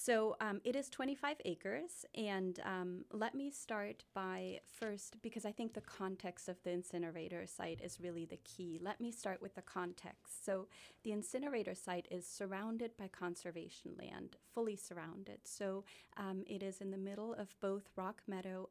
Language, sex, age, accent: English, female, 30-49, American